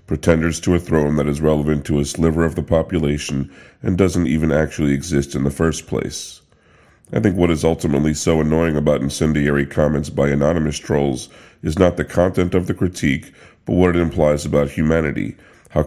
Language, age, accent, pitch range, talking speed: English, 40-59, American, 75-85 Hz, 185 wpm